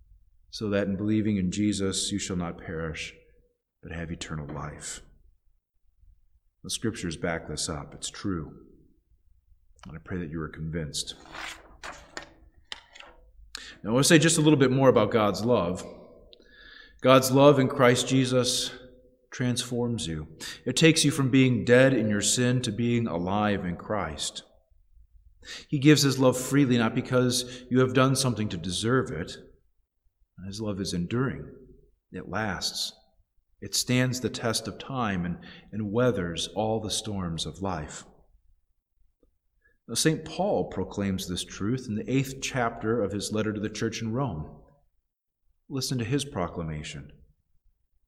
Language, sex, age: English, male, 40-59